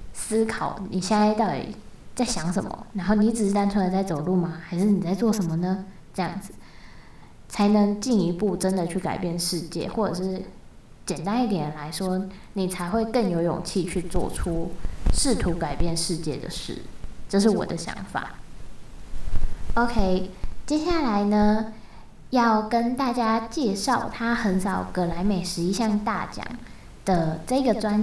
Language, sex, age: Chinese, female, 10-29